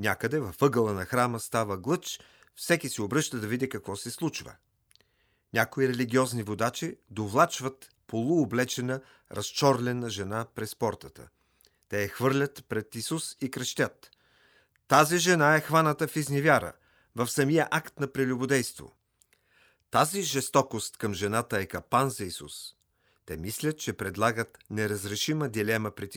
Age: 40-59